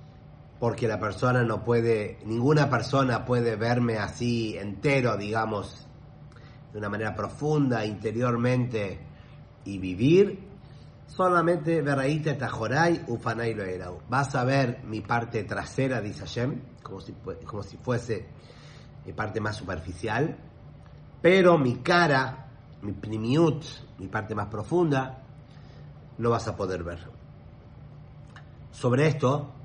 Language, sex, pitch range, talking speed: English, male, 110-145 Hz, 110 wpm